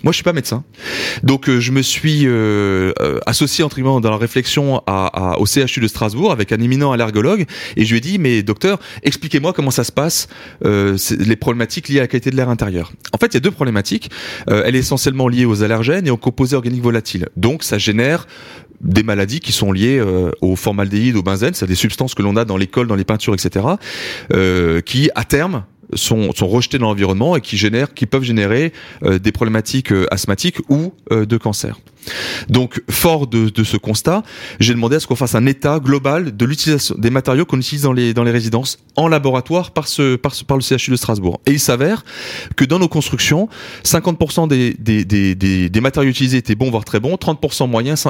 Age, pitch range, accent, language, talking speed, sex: 30-49, 110-140 Hz, French, French, 220 wpm, male